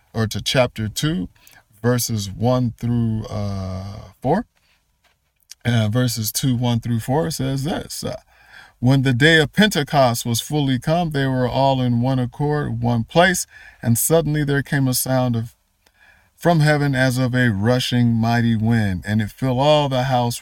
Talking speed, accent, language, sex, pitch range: 160 wpm, American, English, male, 110-135 Hz